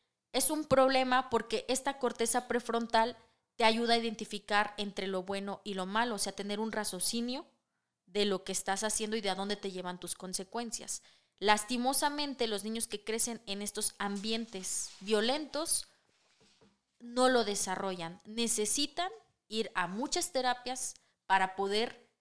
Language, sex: Spanish, female